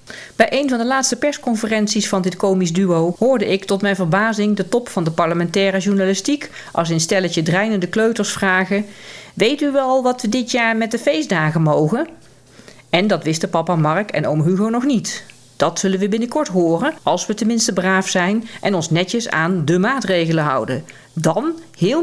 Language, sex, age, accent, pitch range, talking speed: Dutch, female, 40-59, Dutch, 165-225 Hz, 185 wpm